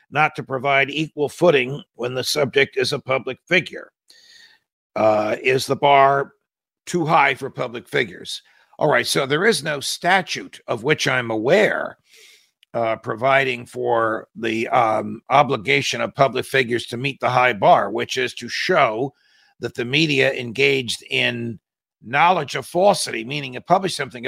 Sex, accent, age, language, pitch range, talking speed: male, American, 50-69, English, 120-145 Hz, 155 wpm